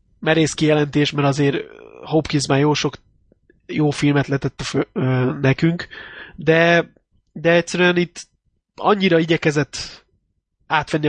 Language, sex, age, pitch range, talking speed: Hungarian, male, 20-39, 135-160 Hz, 105 wpm